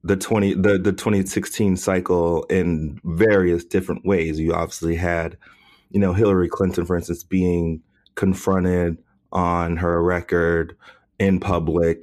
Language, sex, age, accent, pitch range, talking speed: English, male, 30-49, American, 85-100 Hz, 130 wpm